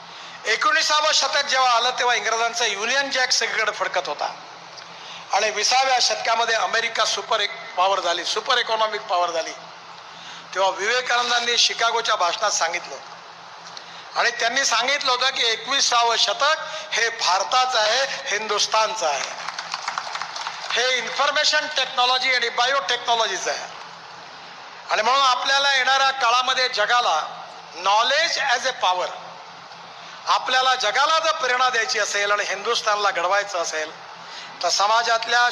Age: 60-79